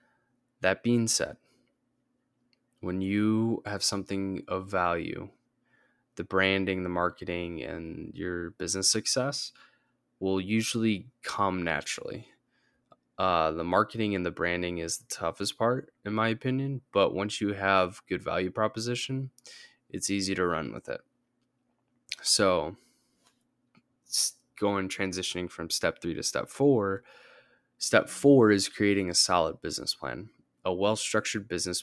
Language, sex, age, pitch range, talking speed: English, male, 20-39, 90-115 Hz, 125 wpm